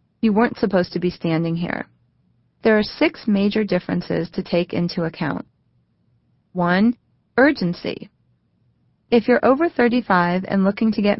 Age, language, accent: 30-49, English, American